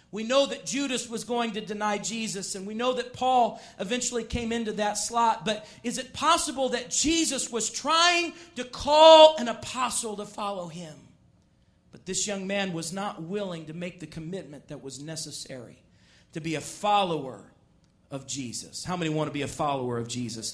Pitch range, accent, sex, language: 205-245 Hz, American, male, English